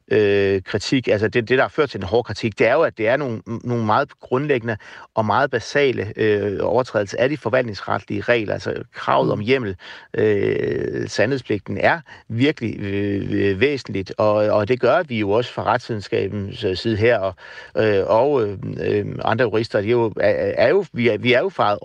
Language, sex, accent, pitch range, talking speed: Danish, male, native, 105-125 Hz, 185 wpm